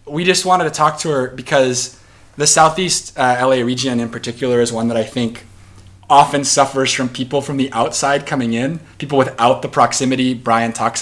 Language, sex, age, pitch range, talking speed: English, male, 30-49, 110-135 Hz, 190 wpm